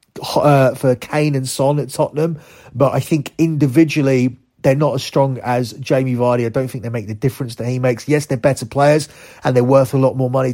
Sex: male